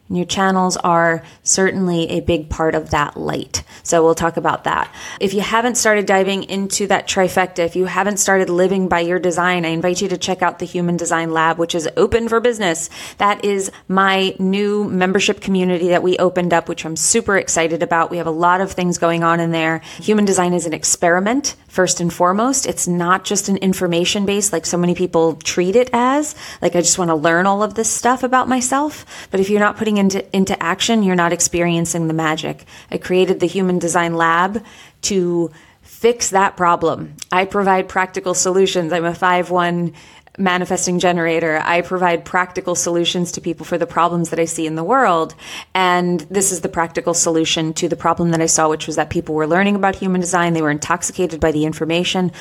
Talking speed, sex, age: 205 wpm, female, 30-49